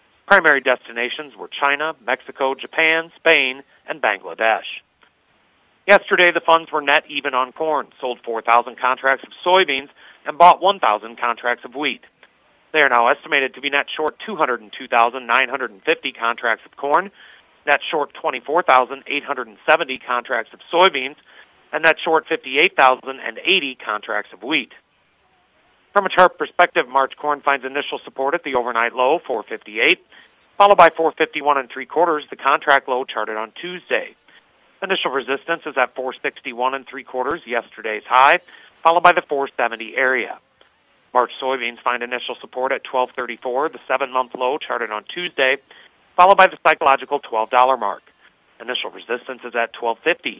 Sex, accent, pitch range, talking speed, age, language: male, American, 125-165 Hz, 140 wpm, 40-59, English